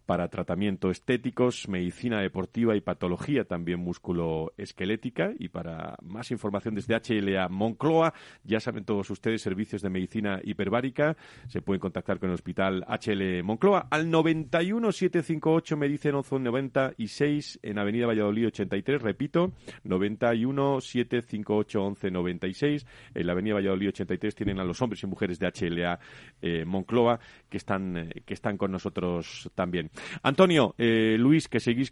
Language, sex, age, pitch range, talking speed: Spanish, male, 40-59, 100-130 Hz, 140 wpm